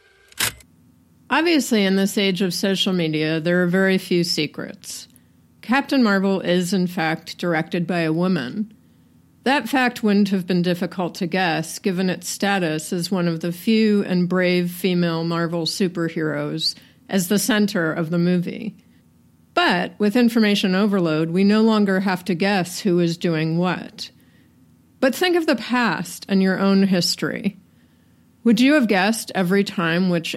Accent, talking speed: American, 155 wpm